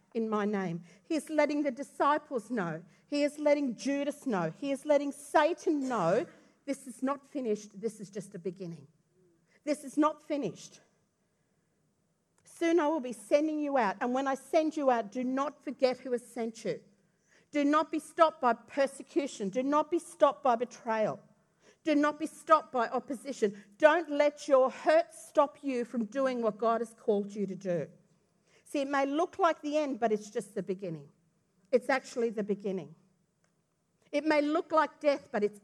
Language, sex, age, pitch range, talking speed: English, female, 40-59, 205-290 Hz, 180 wpm